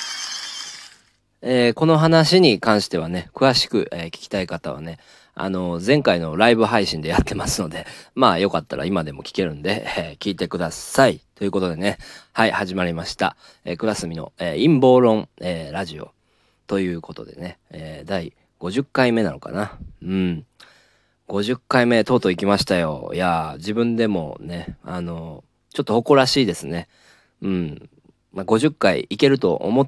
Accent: native